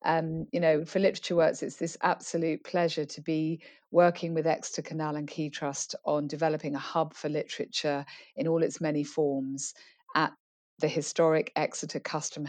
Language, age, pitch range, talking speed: English, 40-59, 150-170 Hz, 170 wpm